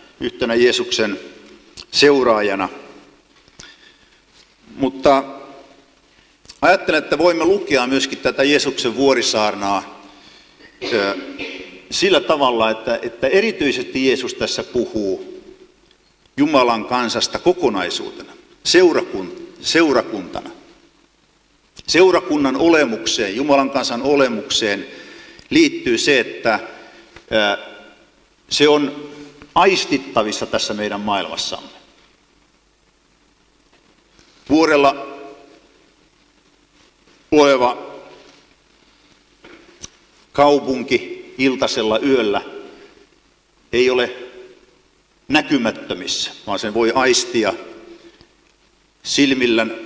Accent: native